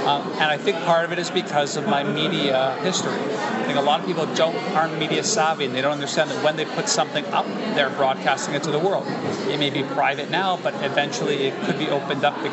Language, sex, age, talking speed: English, male, 40-59, 250 wpm